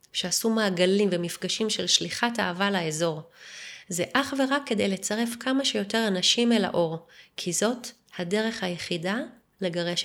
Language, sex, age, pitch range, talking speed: Hebrew, female, 30-49, 175-230 Hz, 130 wpm